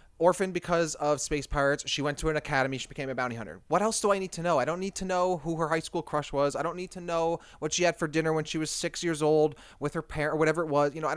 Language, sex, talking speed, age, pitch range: English, male, 315 wpm, 20-39, 120-165 Hz